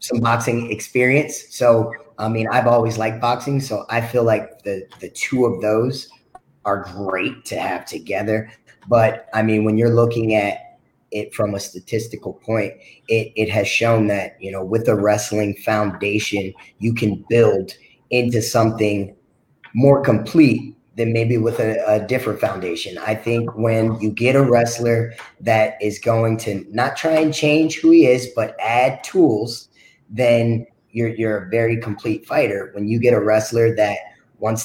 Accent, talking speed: American, 165 wpm